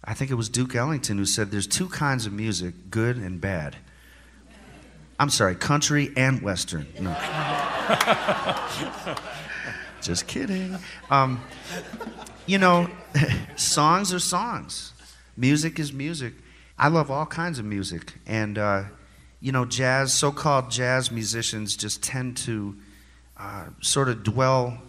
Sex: male